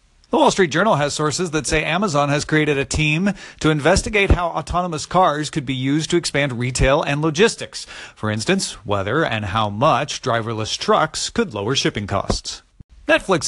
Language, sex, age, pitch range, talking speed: English, male, 40-59, 115-155 Hz, 175 wpm